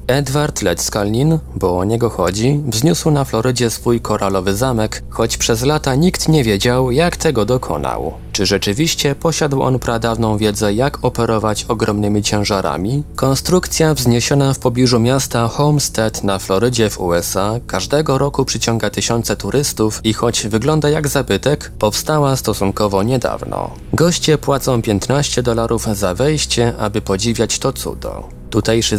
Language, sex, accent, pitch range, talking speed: Polish, male, native, 105-135 Hz, 135 wpm